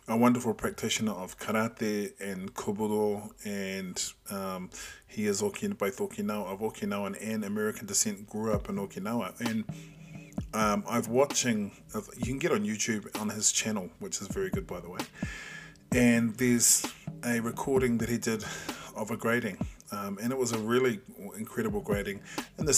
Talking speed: 160 wpm